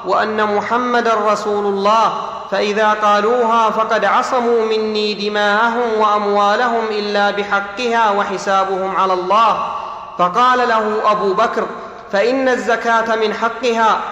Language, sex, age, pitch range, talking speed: Arabic, male, 30-49, 215-235 Hz, 100 wpm